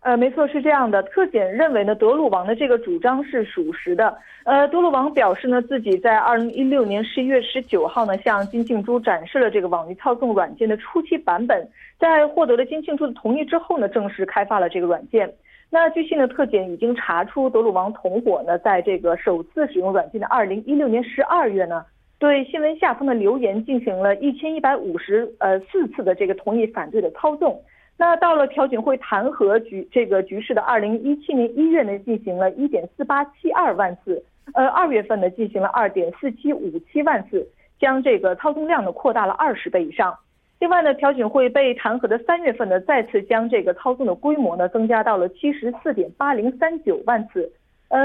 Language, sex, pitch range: Korean, female, 215-305 Hz